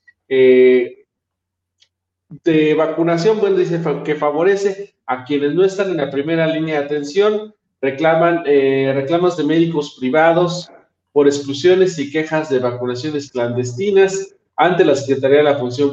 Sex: male